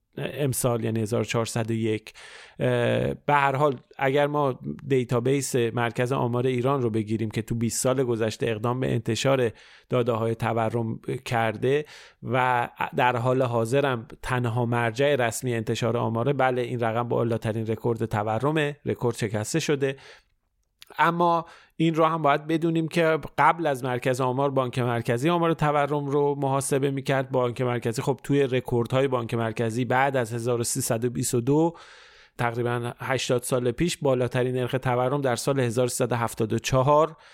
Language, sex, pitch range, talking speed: Persian, male, 120-145 Hz, 130 wpm